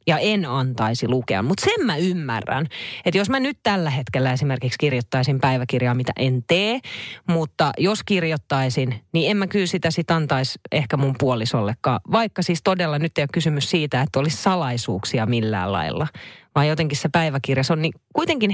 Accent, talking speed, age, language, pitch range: native, 175 wpm, 30-49, Finnish, 130-180 Hz